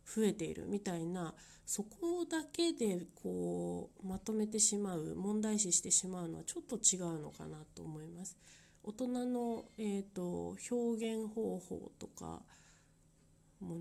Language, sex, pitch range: Japanese, female, 160-215 Hz